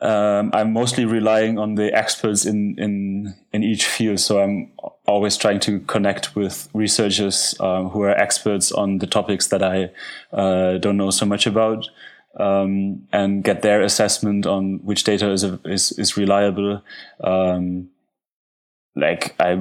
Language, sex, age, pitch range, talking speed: English, male, 20-39, 95-110 Hz, 155 wpm